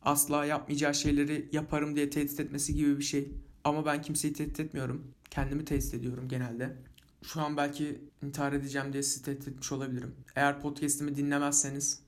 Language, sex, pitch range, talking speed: Turkish, male, 140-150 Hz, 160 wpm